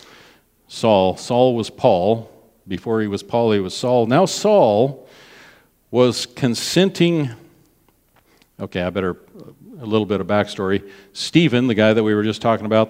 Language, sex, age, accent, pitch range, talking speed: English, male, 50-69, American, 100-125 Hz, 150 wpm